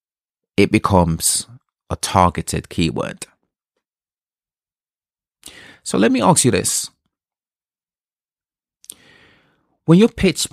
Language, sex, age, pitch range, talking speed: English, male, 30-49, 90-120 Hz, 80 wpm